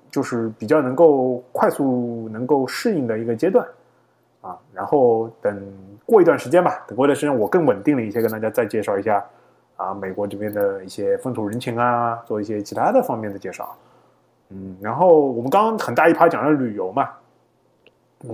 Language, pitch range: Chinese, 105-130 Hz